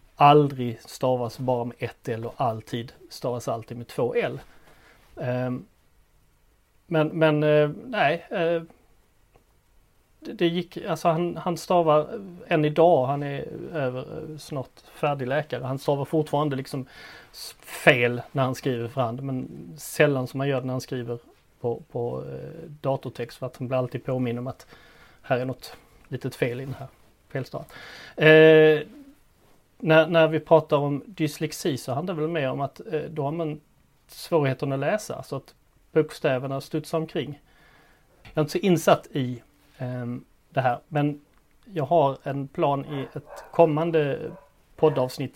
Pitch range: 125-155 Hz